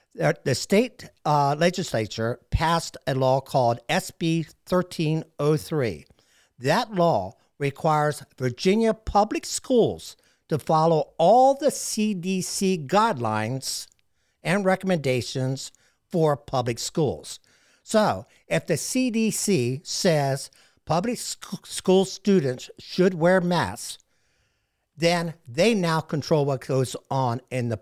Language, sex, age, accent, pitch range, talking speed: English, male, 60-79, American, 140-210 Hz, 100 wpm